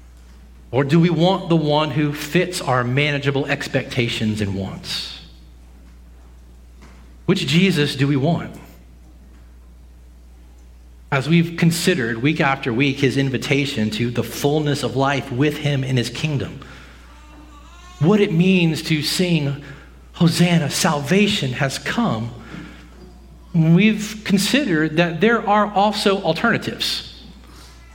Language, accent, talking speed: English, American, 110 wpm